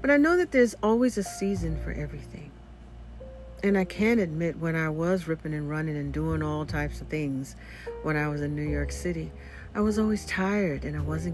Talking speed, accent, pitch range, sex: 210 wpm, American, 145-200 Hz, female